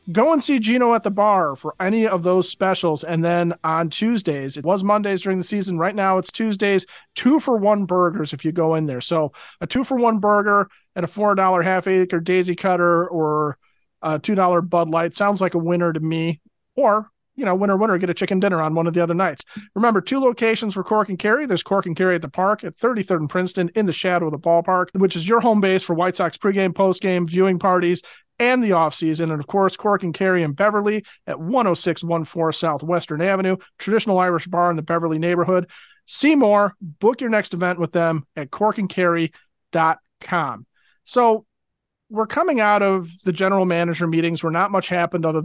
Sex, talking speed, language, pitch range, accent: male, 200 wpm, English, 170-205 Hz, American